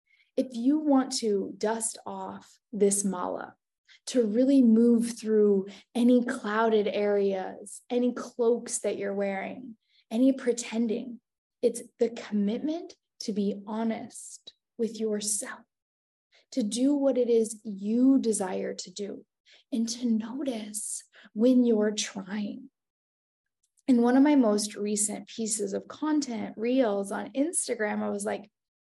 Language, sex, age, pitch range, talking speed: English, female, 10-29, 210-255 Hz, 125 wpm